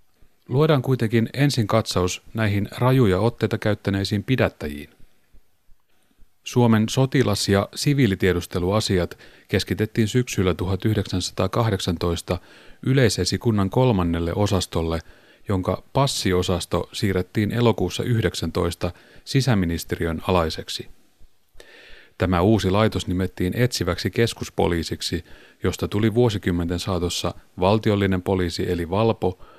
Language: Finnish